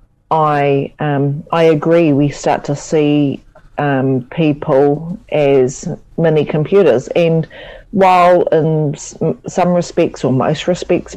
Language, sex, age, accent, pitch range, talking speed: English, female, 40-59, Australian, 140-160 Hz, 115 wpm